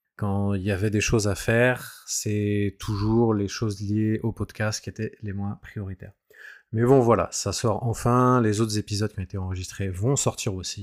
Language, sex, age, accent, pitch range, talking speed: French, male, 20-39, French, 100-115 Hz, 200 wpm